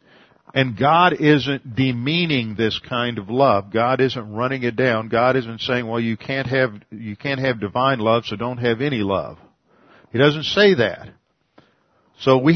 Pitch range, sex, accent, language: 115-140 Hz, male, American, English